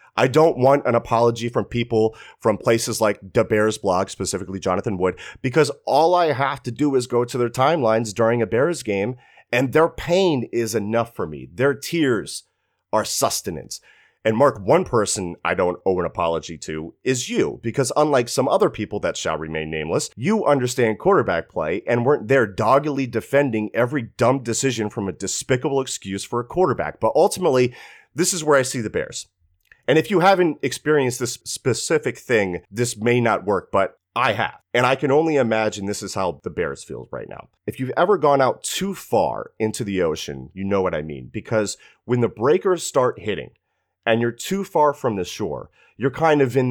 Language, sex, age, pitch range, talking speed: English, male, 30-49, 105-140 Hz, 195 wpm